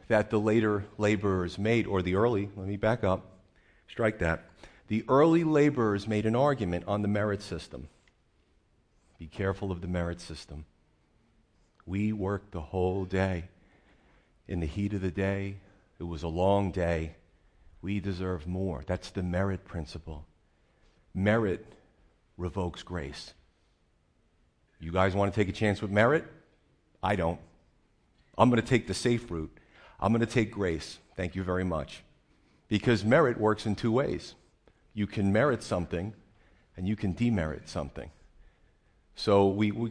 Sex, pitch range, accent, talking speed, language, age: male, 85-105 Hz, American, 150 wpm, English, 40-59